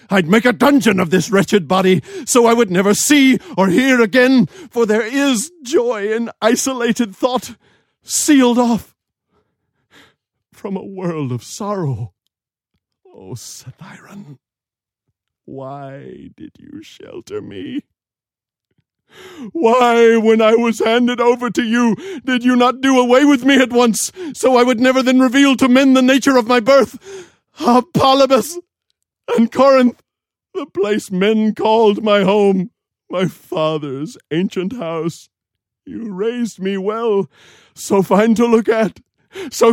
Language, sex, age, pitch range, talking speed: English, male, 50-69, 190-255 Hz, 135 wpm